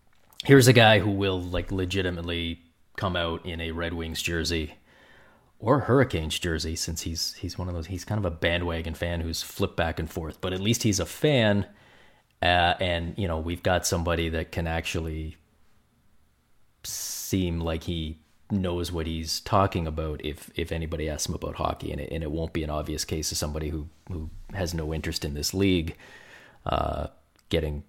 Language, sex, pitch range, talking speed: English, male, 80-95 Hz, 185 wpm